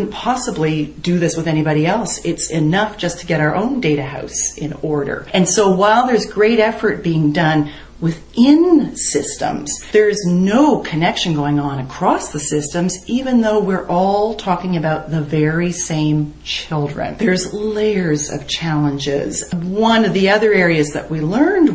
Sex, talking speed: female, 155 wpm